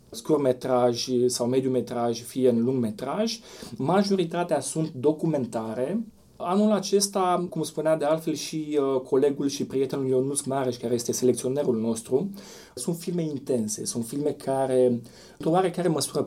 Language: Romanian